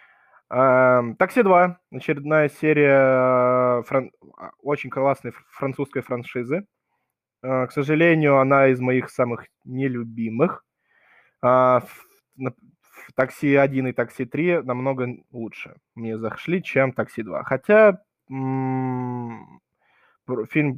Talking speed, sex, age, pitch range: 90 wpm, male, 20-39, 125-145 Hz